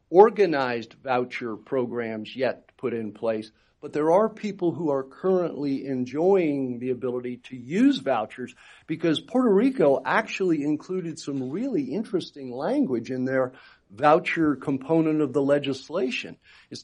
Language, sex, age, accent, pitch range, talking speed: English, male, 50-69, American, 125-170 Hz, 130 wpm